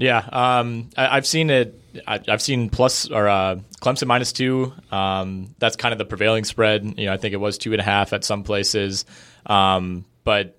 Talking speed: 210 wpm